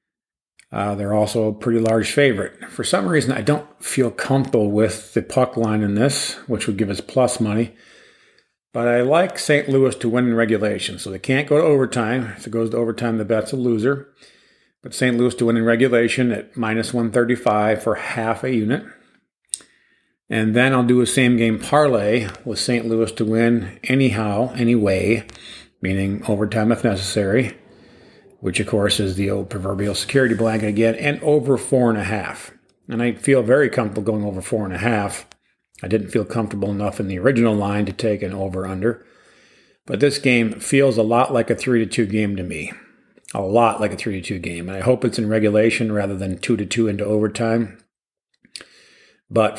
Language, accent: English, American